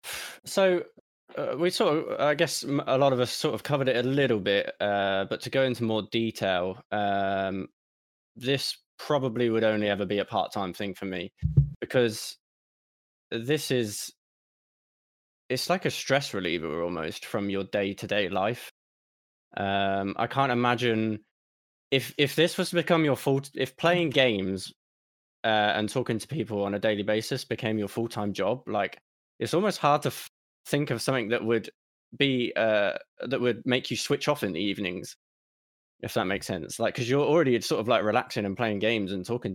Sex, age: male, 20-39